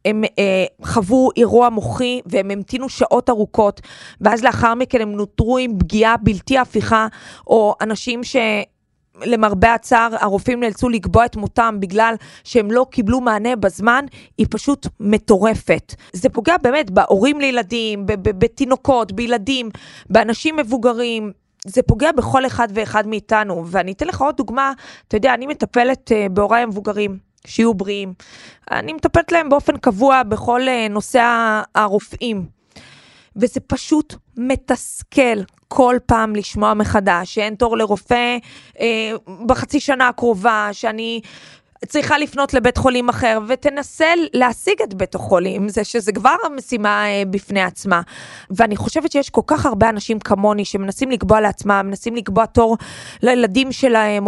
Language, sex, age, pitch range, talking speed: Hebrew, female, 20-39, 210-255 Hz, 130 wpm